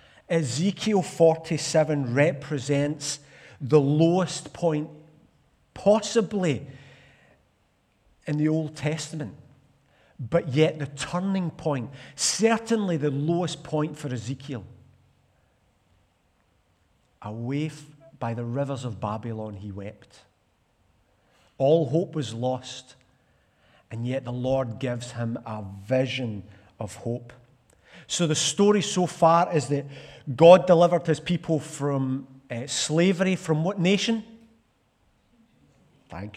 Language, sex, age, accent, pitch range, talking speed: English, male, 50-69, British, 130-175 Hz, 100 wpm